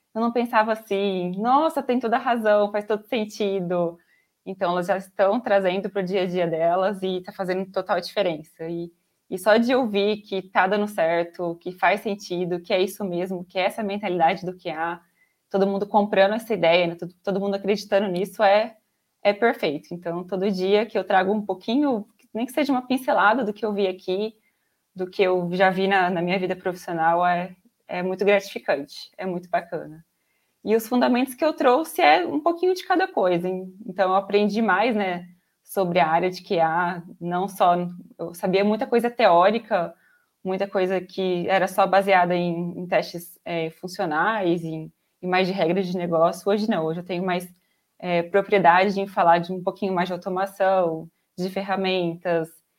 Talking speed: 185 wpm